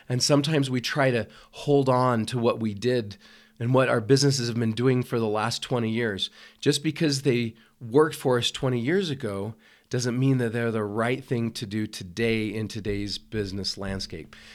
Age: 40-59